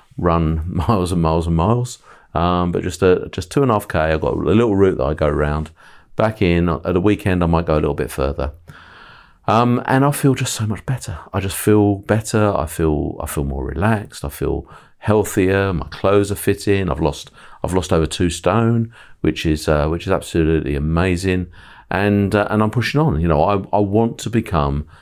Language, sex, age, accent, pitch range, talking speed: English, male, 40-59, British, 80-105 Hz, 215 wpm